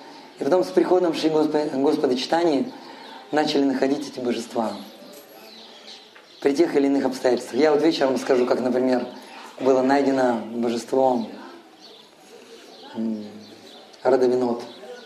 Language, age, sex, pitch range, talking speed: Russian, 30-49, male, 130-160 Hz, 110 wpm